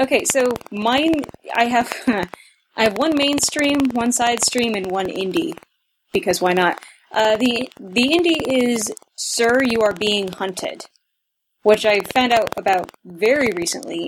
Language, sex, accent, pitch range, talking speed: English, female, American, 190-260 Hz, 150 wpm